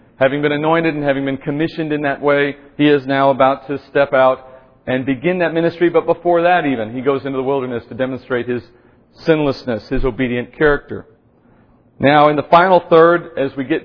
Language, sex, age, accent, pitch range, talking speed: English, male, 40-59, American, 130-155 Hz, 195 wpm